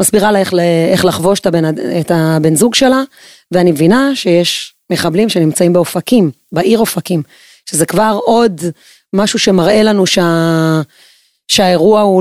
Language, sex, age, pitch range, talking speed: Hebrew, female, 20-39, 165-205 Hz, 140 wpm